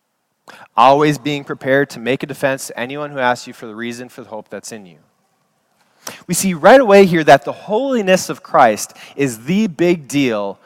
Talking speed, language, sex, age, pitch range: 195 wpm, English, male, 20-39, 125-175 Hz